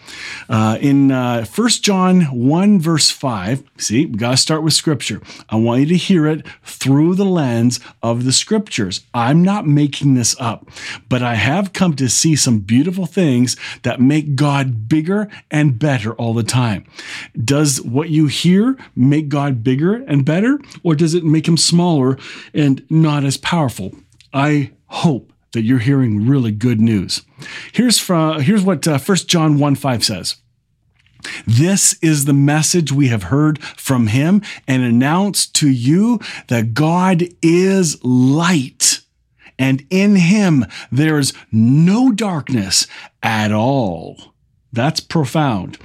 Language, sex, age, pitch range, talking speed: English, male, 40-59, 120-165 Hz, 150 wpm